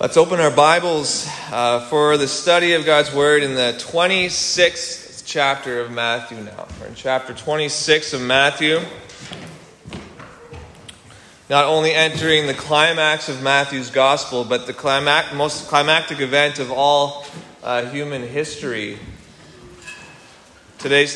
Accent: American